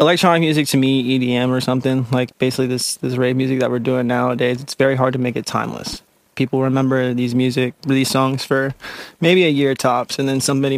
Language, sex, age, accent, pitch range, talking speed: English, male, 20-39, American, 130-140 Hz, 210 wpm